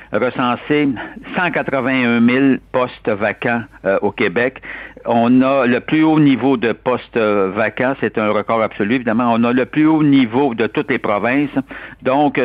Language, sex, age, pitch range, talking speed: French, male, 60-79, 105-125 Hz, 160 wpm